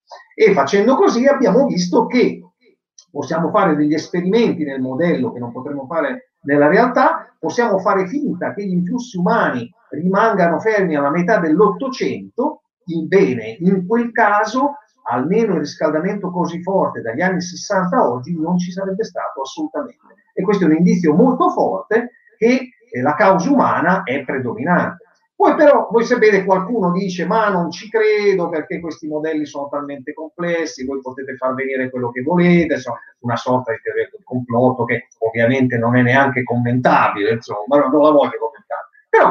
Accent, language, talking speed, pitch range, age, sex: native, Italian, 160 wpm, 150-225 Hz, 50-69, male